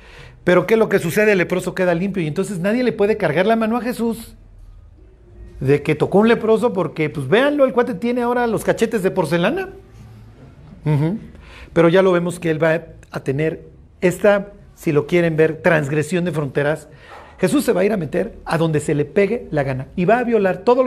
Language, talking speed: Spanish, 205 wpm